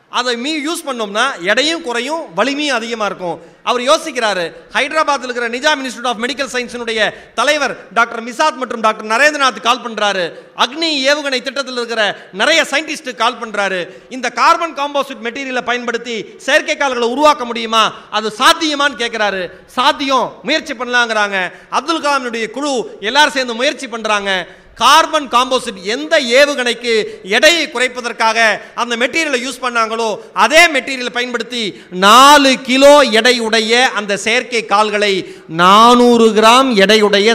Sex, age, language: male, 30-49, Tamil